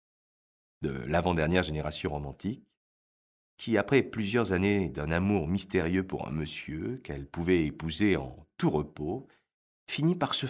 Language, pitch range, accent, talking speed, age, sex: French, 80-110 Hz, French, 130 wpm, 40-59, male